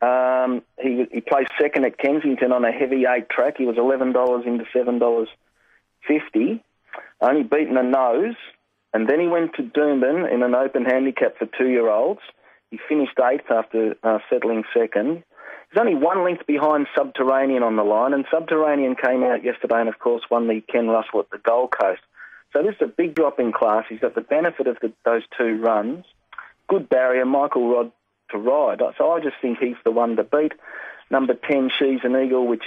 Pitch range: 115-135 Hz